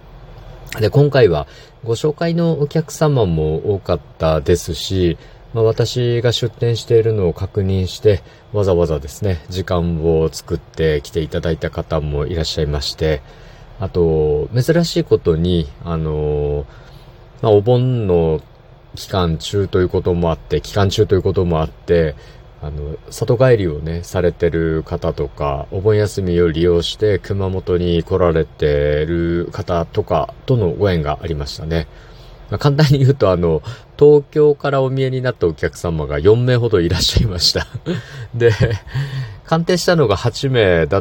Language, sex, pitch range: Japanese, male, 85-125 Hz